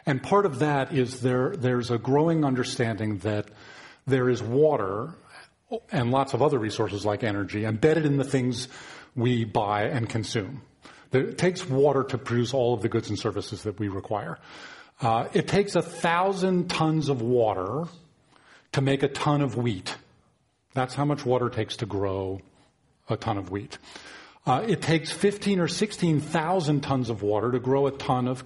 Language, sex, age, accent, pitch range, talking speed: English, male, 40-59, American, 115-150 Hz, 175 wpm